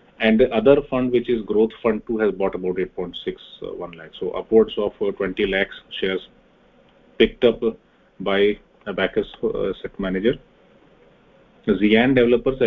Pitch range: 95-120 Hz